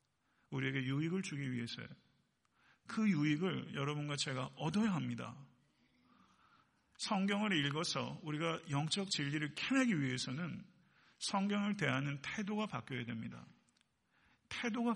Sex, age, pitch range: male, 50-69, 130-180 Hz